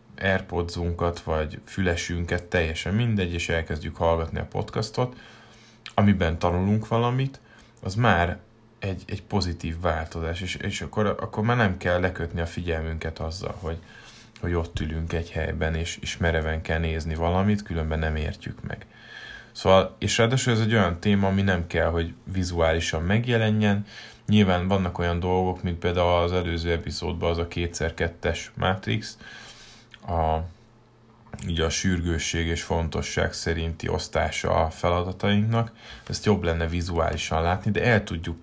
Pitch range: 85-110 Hz